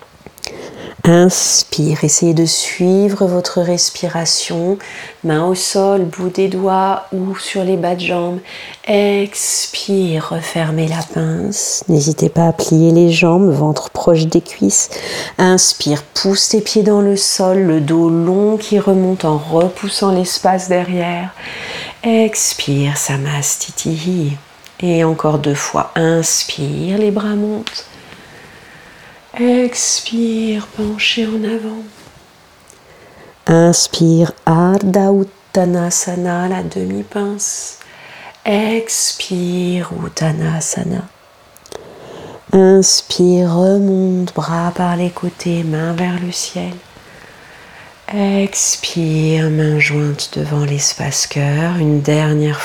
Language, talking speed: French, 100 wpm